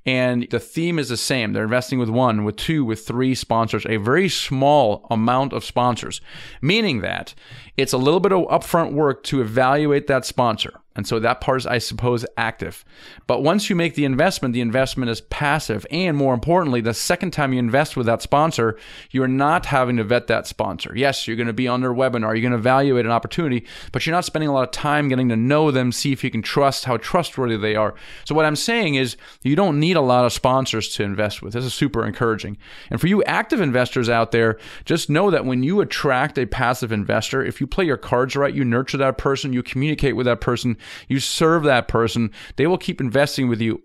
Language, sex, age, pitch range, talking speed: English, male, 30-49, 115-145 Hz, 225 wpm